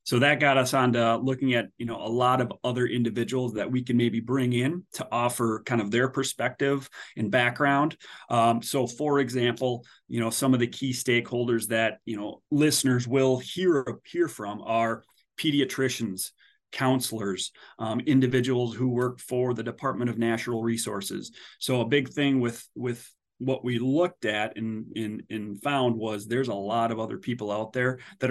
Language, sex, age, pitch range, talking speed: English, male, 30-49, 110-125 Hz, 180 wpm